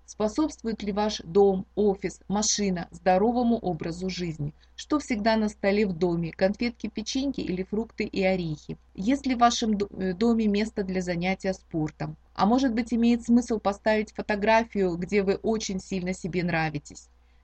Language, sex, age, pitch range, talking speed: Russian, female, 20-39, 175-215 Hz, 150 wpm